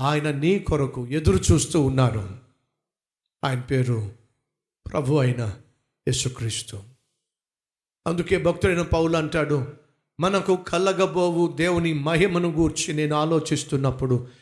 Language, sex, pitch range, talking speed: Telugu, male, 140-190 Hz, 90 wpm